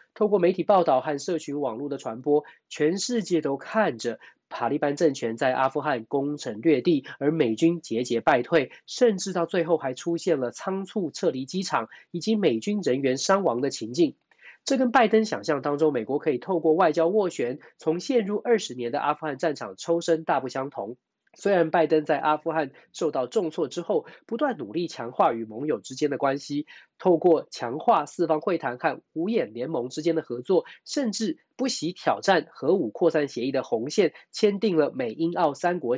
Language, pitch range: Chinese, 145-200 Hz